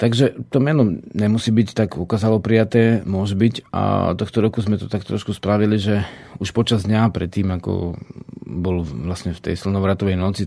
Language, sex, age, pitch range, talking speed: Slovak, male, 40-59, 95-115 Hz, 170 wpm